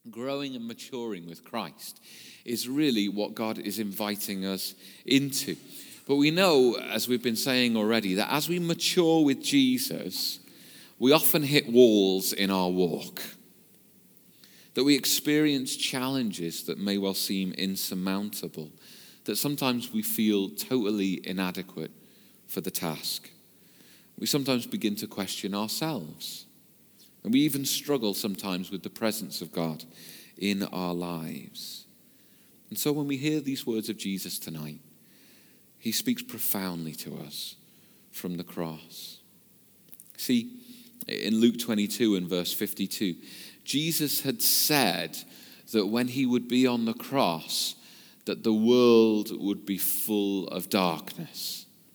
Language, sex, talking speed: English, male, 135 wpm